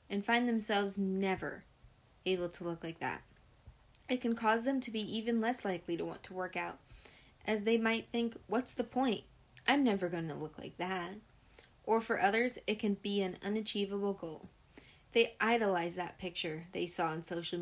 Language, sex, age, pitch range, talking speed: English, female, 20-39, 180-220 Hz, 180 wpm